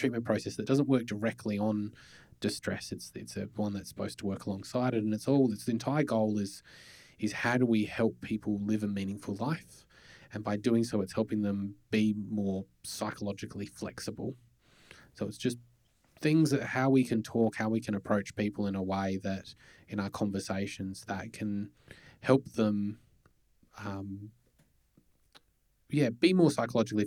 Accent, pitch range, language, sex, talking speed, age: Australian, 100-115 Hz, English, male, 170 wpm, 20-39